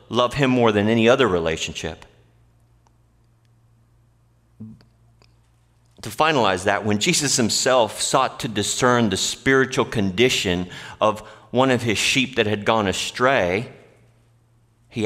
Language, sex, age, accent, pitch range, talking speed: English, male, 40-59, American, 100-120 Hz, 115 wpm